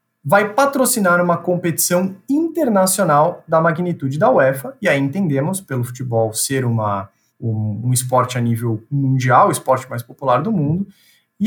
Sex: male